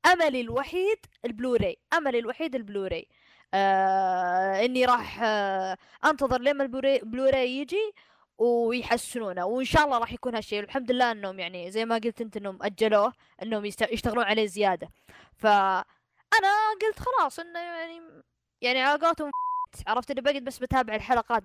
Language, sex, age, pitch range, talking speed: Arabic, female, 20-39, 235-320 Hz, 140 wpm